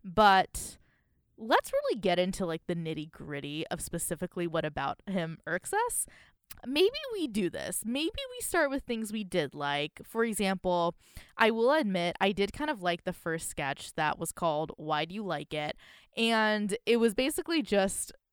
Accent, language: American, English